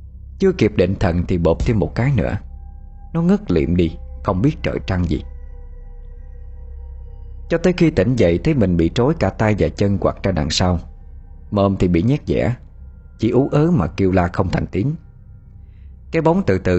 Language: Vietnamese